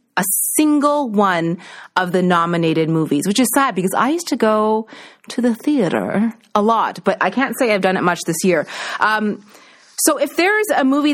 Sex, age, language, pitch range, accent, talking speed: female, 30-49, English, 175-230 Hz, American, 195 wpm